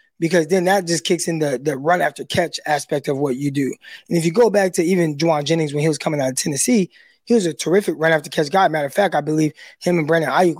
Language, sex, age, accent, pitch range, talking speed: English, male, 20-39, American, 160-200 Hz, 250 wpm